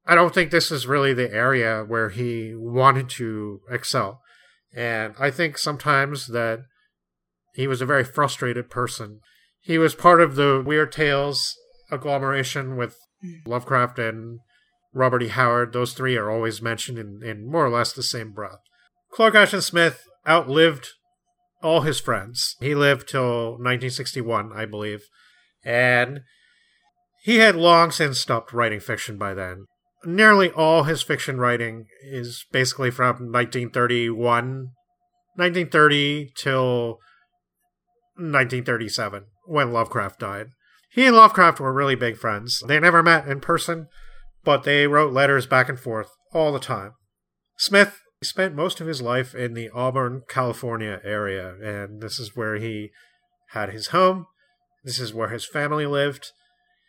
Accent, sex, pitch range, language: American, male, 120-165 Hz, English